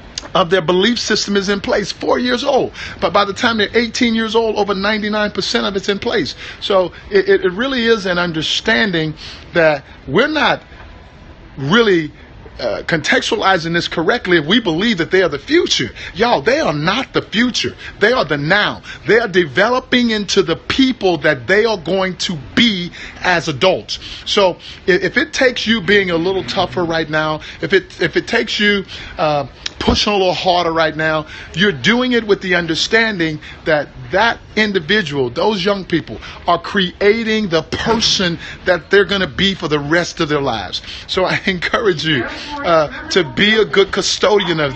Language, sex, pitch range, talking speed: English, male, 160-205 Hz, 180 wpm